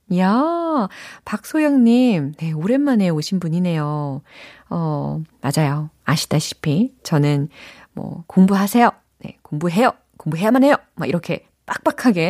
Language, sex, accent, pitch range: Korean, female, native, 155-250 Hz